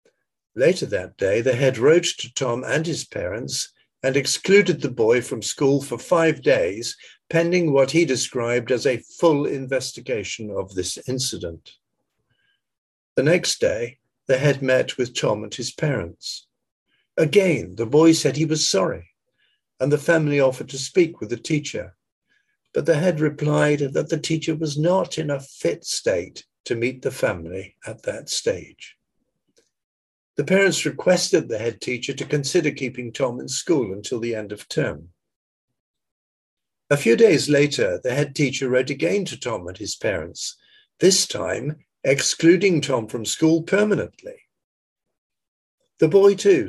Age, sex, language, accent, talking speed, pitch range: 60-79, male, English, British, 155 wpm, 130-185 Hz